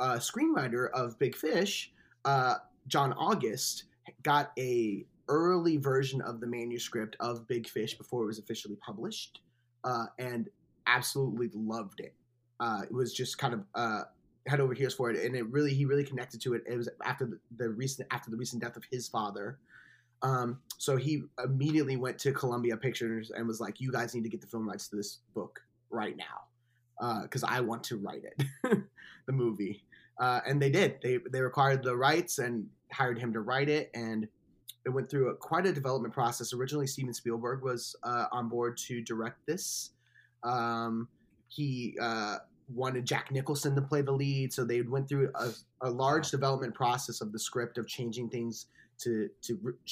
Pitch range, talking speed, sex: 115-135 Hz, 185 wpm, male